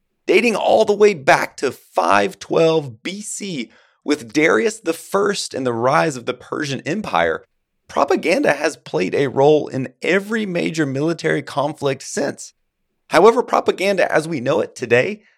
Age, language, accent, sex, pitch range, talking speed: 30-49, English, American, male, 135-175 Hz, 140 wpm